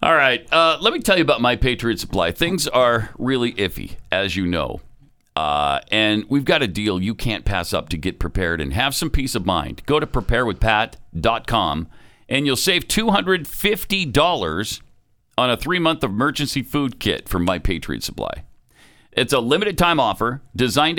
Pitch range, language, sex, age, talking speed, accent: 105-155 Hz, English, male, 50-69, 185 wpm, American